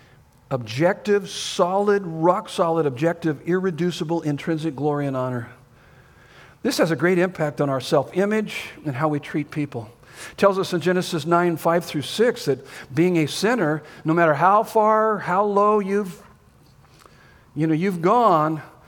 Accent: American